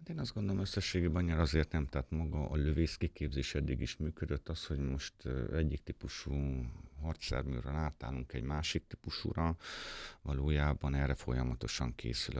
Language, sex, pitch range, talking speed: Hungarian, male, 65-80 Hz, 135 wpm